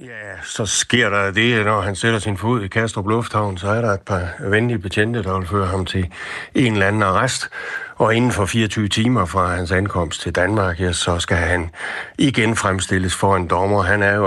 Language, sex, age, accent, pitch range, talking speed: Danish, male, 60-79, native, 90-105 Hz, 215 wpm